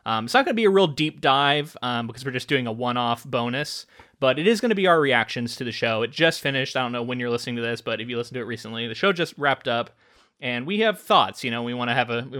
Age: 30-49